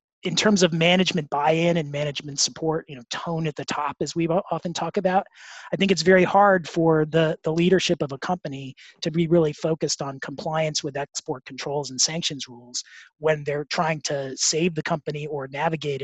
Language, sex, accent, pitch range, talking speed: English, male, American, 140-175 Hz, 195 wpm